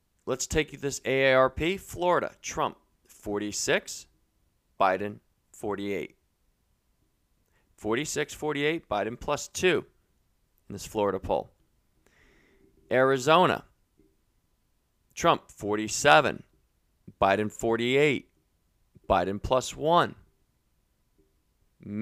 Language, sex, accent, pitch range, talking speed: English, male, American, 105-135 Hz, 75 wpm